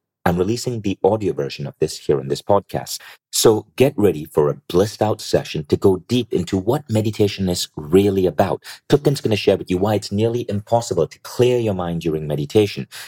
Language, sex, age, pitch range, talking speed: English, male, 40-59, 85-115 Hz, 200 wpm